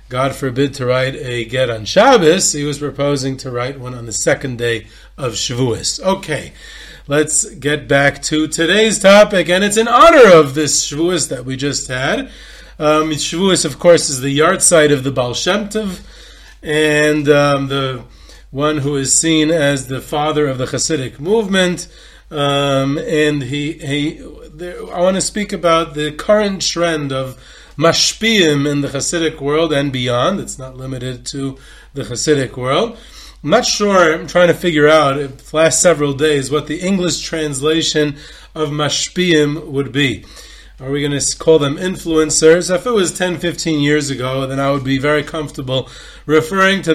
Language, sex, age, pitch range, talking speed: English, male, 30-49, 135-165 Hz, 175 wpm